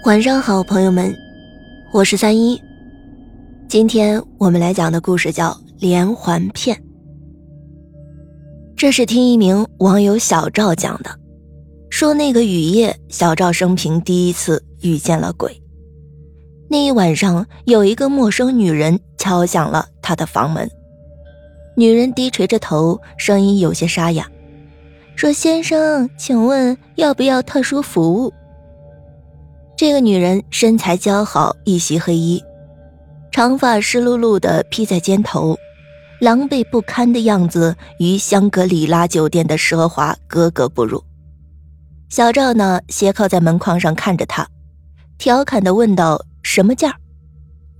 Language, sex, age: Chinese, female, 20-39